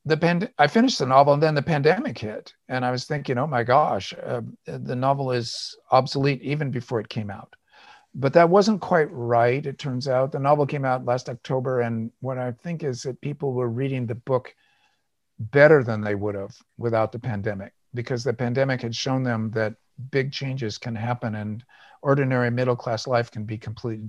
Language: English